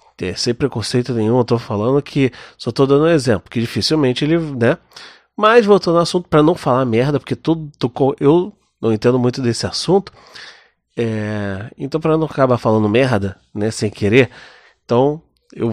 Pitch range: 115-160 Hz